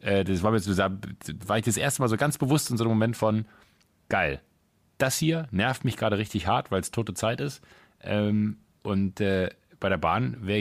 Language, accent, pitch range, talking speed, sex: German, German, 90-115 Hz, 205 wpm, male